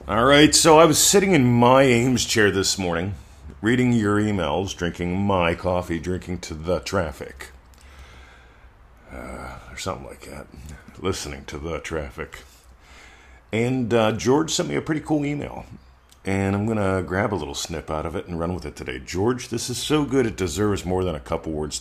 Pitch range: 75-110 Hz